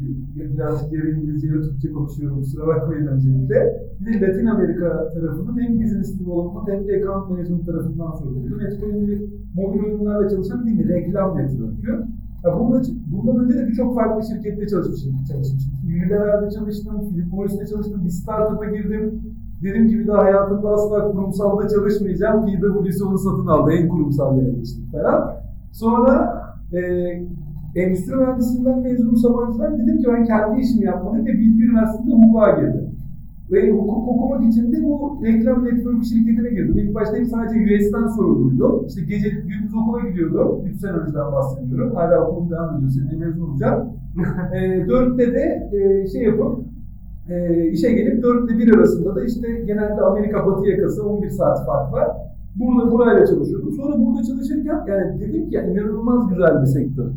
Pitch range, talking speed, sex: 170-225 Hz, 160 wpm, male